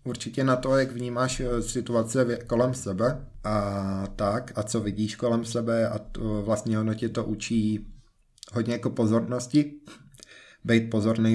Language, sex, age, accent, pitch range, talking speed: Czech, male, 20-39, native, 105-115 Hz, 145 wpm